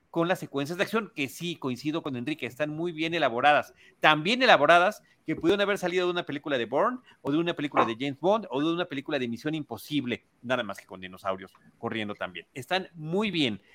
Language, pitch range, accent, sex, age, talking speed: Spanish, 135-180 Hz, Mexican, male, 40-59, 220 wpm